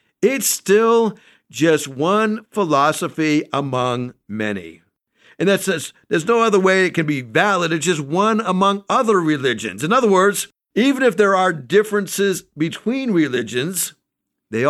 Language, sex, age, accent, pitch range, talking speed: English, male, 50-69, American, 150-215 Hz, 145 wpm